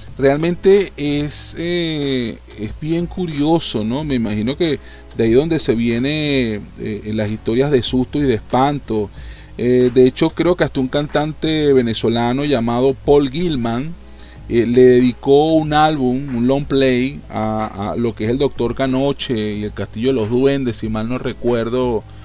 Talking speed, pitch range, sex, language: 165 wpm, 115-145 Hz, male, Spanish